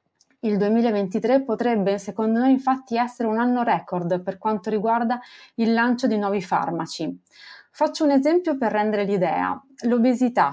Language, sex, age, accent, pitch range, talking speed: Italian, female, 30-49, native, 190-250 Hz, 145 wpm